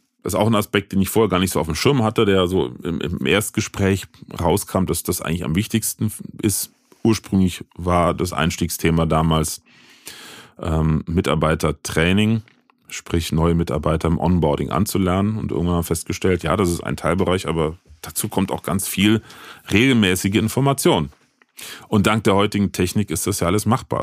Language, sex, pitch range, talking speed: German, male, 85-105 Hz, 165 wpm